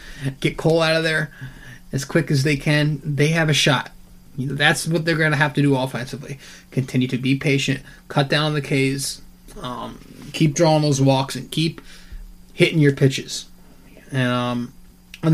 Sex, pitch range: male, 130-155 Hz